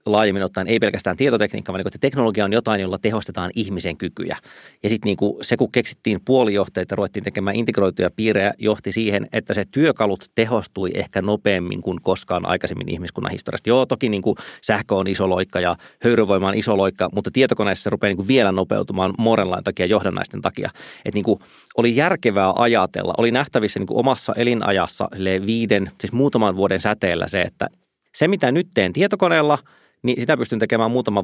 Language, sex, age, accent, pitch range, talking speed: Finnish, male, 30-49, native, 100-130 Hz, 180 wpm